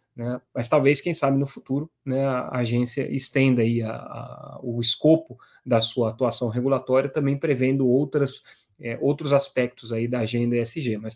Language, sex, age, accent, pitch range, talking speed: Portuguese, male, 20-39, Brazilian, 120-150 Hz, 165 wpm